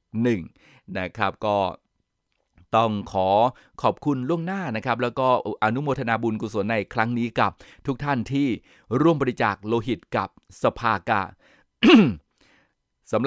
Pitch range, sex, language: 100-120 Hz, male, Thai